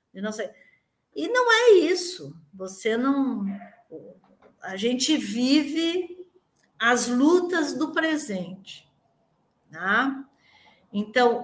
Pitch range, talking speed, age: 215-280 Hz, 95 wpm, 50-69